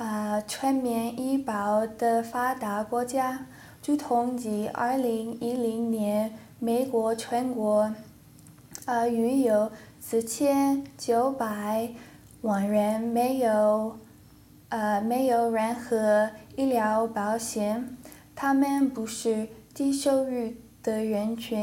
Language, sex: English, female